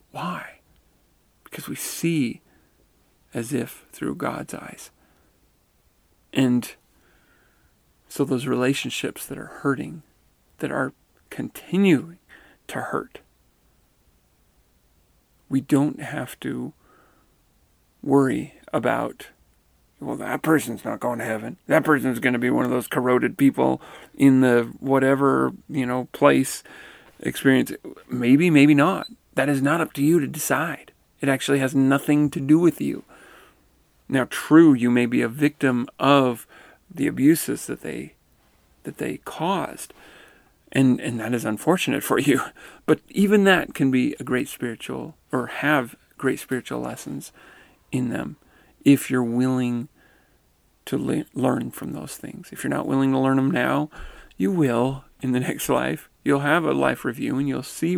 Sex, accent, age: male, American, 40-59